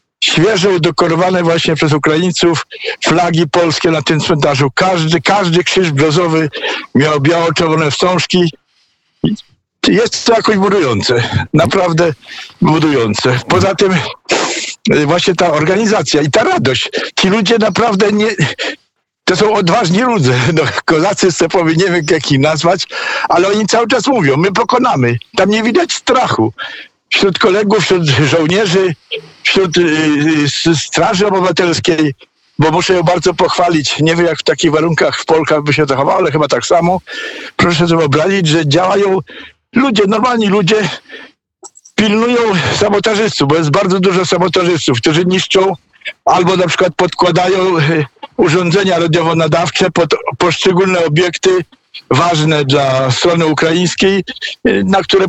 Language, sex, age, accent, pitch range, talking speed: Polish, male, 60-79, native, 155-195 Hz, 125 wpm